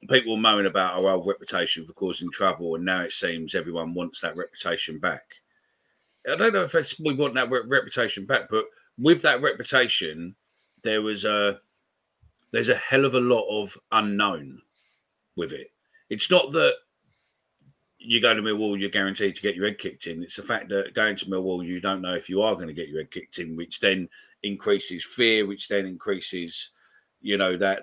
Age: 40-59